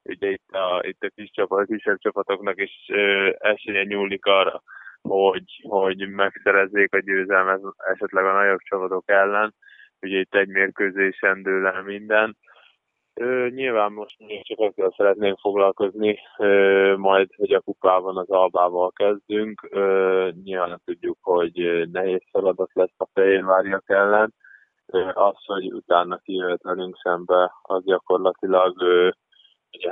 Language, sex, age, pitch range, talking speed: Hungarian, male, 20-39, 95-110 Hz, 130 wpm